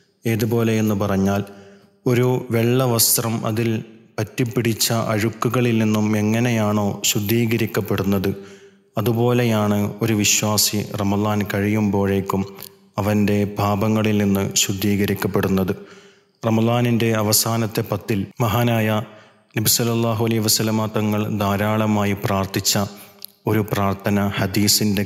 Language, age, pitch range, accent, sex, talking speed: Malayalam, 30-49, 100-115 Hz, native, male, 75 wpm